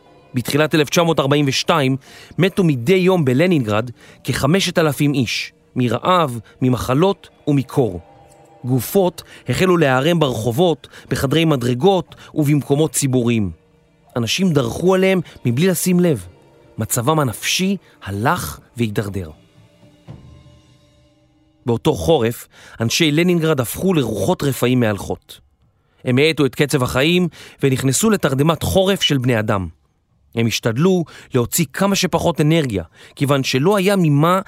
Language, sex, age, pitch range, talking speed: Hebrew, male, 30-49, 120-170 Hz, 100 wpm